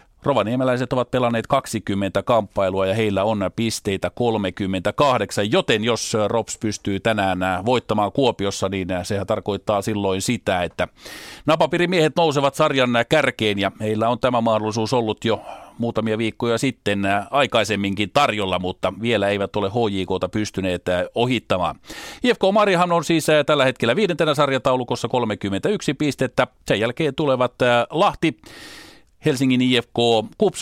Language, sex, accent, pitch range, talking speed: Finnish, male, native, 105-130 Hz, 125 wpm